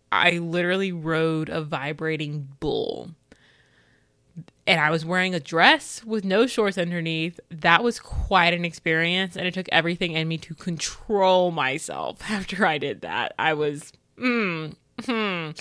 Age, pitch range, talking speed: 20-39, 160-195 Hz, 140 wpm